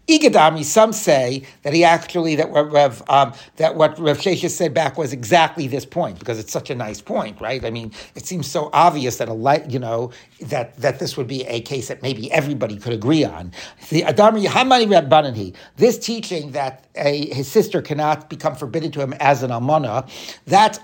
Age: 60-79